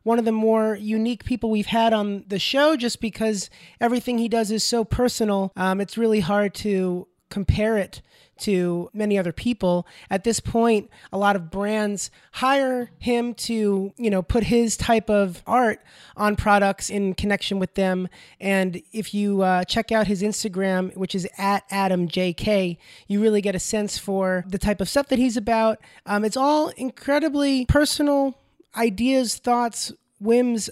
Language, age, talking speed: English, 30-49, 170 wpm